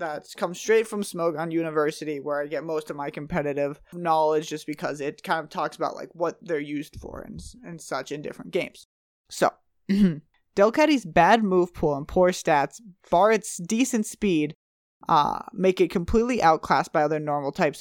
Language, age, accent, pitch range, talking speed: English, 20-39, American, 155-200 Hz, 180 wpm